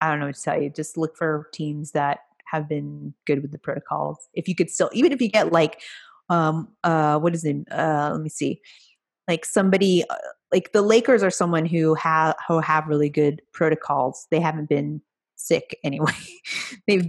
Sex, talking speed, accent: female, 200 wpm, American